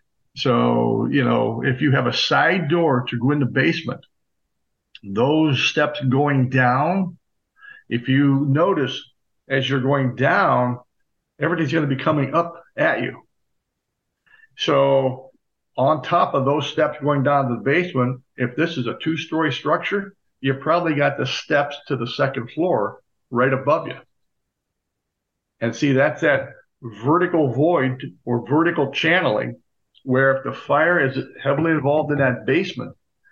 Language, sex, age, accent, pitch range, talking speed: English, male, 50-69, American, 130-160 Hz, 145 wpm